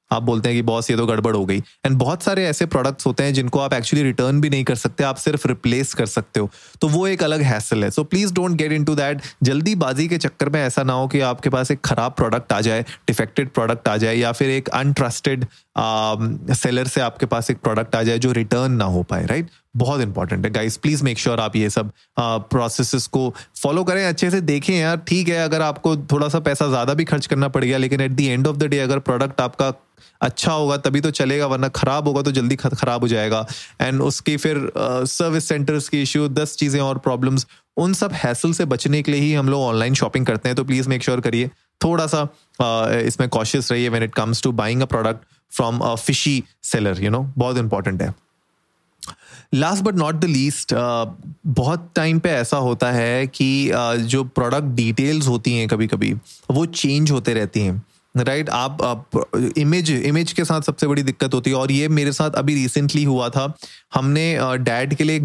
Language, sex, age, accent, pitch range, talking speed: Hindi, male, 20-39, native, 120-150 Hz, 220 wpm